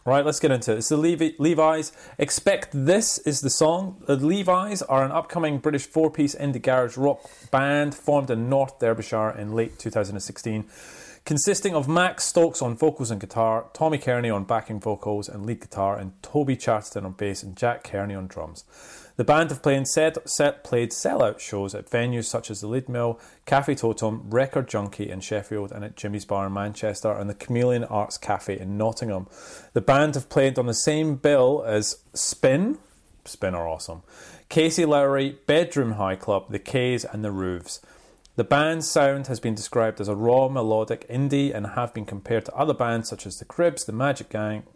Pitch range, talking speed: 110-145 Hz, 190 wpm